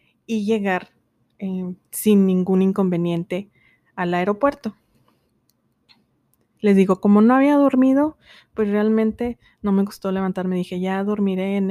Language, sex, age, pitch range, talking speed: Spanish, female, 20-39, 180-220 Hz, 125 wpm